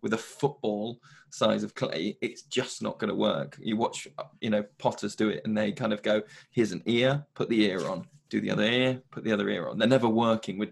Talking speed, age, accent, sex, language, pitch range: 245 wpm, 20-39, British, male, English, 105-130 Hz